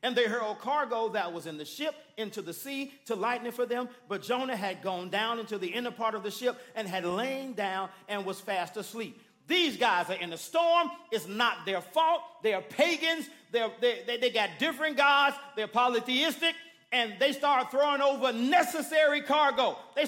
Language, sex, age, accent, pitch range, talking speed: English, male, 40-59, American, 210-300 Hz, 195 wpm